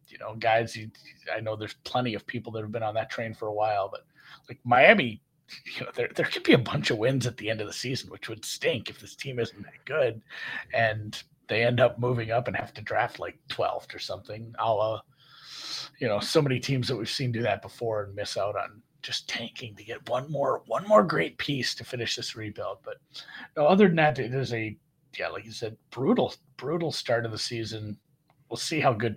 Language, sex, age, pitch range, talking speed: English, male, 40-59, 110-125 Hz, 235 wpm